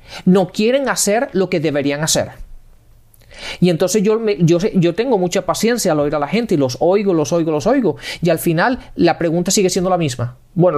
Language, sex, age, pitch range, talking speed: Spanish, male, 40-59, 175-240 Hz, 210 wpm